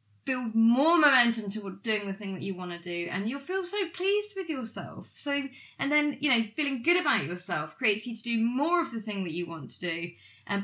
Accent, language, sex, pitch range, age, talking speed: British, English, female, 185-245 Hz, 20-39, 235 wpm